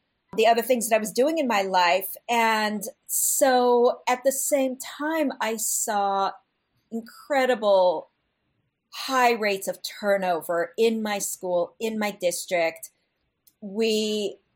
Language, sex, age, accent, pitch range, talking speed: English, female, 40-59, American, 185-240 Hz, 125 wpm